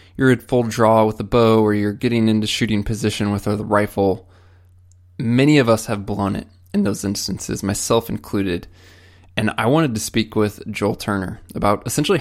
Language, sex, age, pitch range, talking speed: English, male, 20-39, 95-115 Hz, 180 wpm